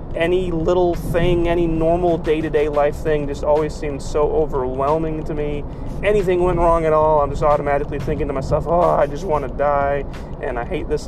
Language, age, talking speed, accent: English, 30-49, 195 wpm, American